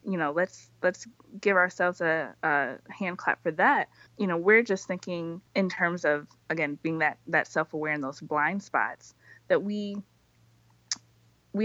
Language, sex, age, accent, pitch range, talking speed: English, female, 20-39, American, 150-190 Hz, 165 wpm